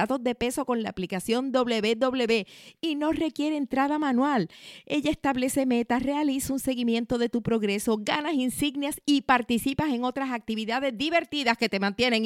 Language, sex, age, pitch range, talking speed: Spanish, female, 50-69, 165-250 Hz, 150 wpm